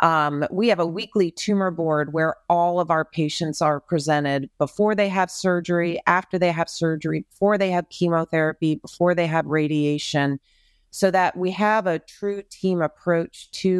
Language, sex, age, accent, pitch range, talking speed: English, female, 40-59, American, 155-200 Hz, 170 wpm